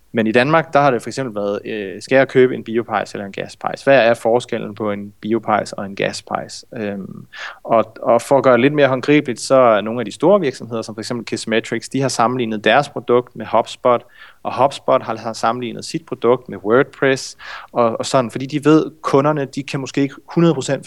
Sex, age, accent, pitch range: male, 30-49, native, 115-135 Hz